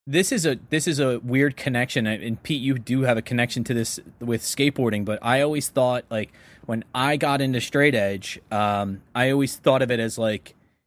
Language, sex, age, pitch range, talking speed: English, male, 20-39, 115-145 Hz, 210 wpm